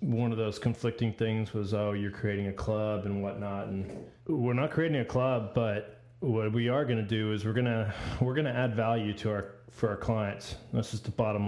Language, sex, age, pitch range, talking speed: English, male, 30-49, 105-120 Hz, 230 wpm